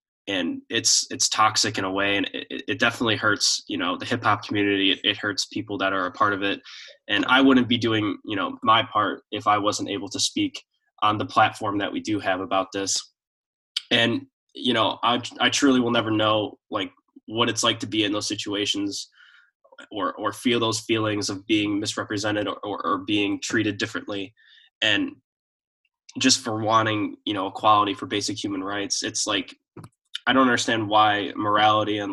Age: 10-29